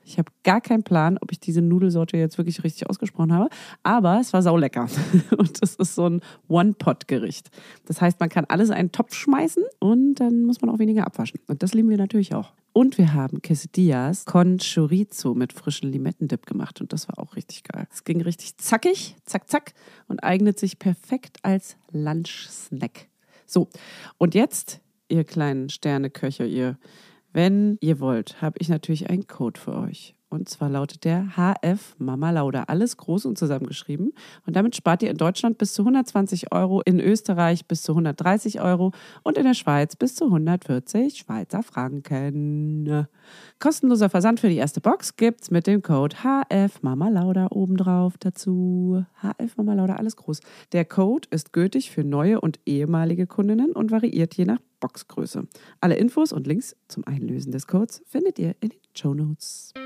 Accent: German